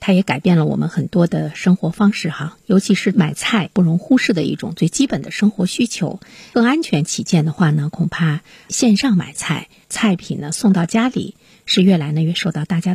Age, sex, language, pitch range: 50-69, female, Chinese, 165-215 Hz